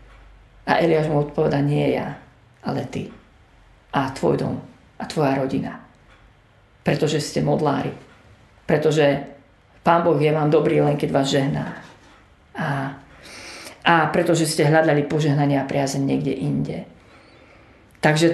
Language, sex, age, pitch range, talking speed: Slovak, female, 40-59, 145-185 Hz, 125 wpm